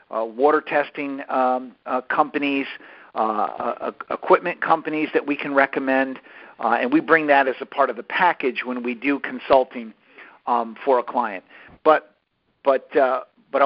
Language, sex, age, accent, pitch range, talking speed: English, male, 50-69, American, 125-155 Hz, 165 wpm